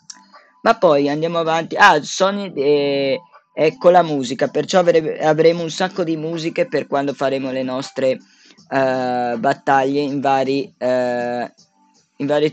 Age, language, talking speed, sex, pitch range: 20-39, Italian, 125 wpm, female, 135-180 Hz